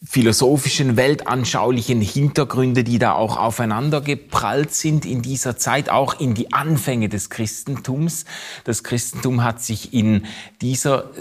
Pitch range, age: 115-155 Hz, 30-49